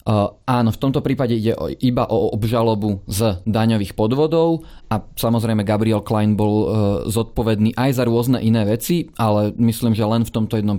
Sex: male